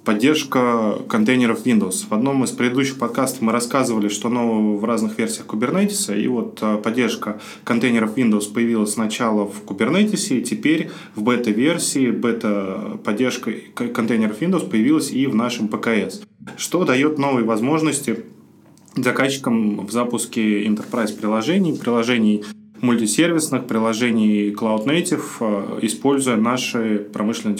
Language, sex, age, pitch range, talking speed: Russian, male, 20-39, 110-150 Hz, 115 wpm